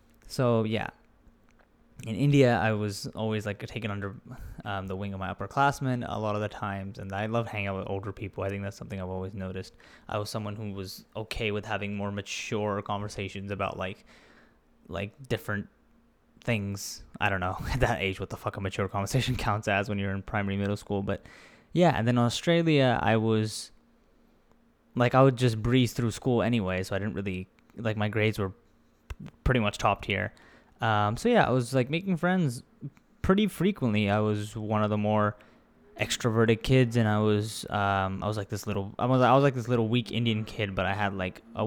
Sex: male